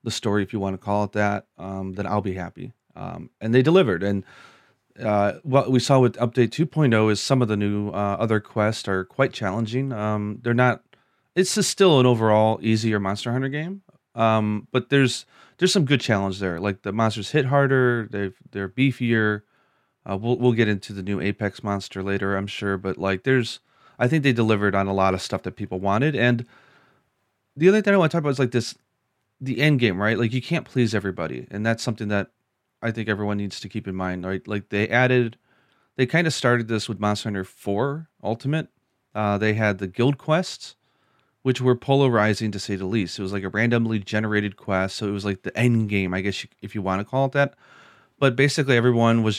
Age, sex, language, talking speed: 30-49, male, English, 220 wpm